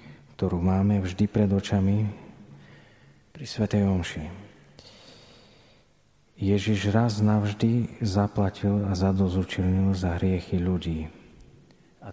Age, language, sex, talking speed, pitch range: 40-59, Slovak, male, 90 wpm, 95-110 Hz